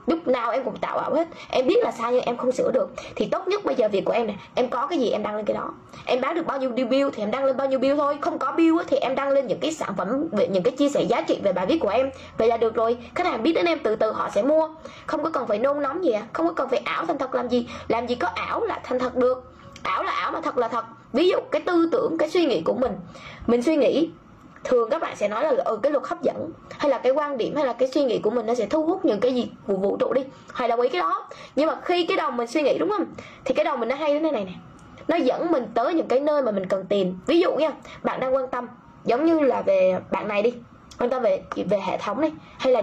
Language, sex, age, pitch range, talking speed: Vietnamese, female, 10-29, 245-315 Hz, 315 wpm